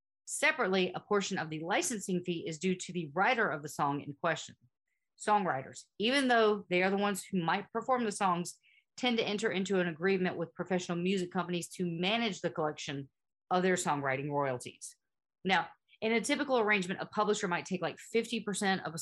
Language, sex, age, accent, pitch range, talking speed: English, female, 40-59, American, 160-205 Hz, 190 wpm